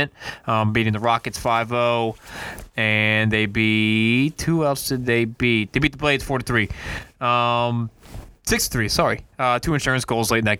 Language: English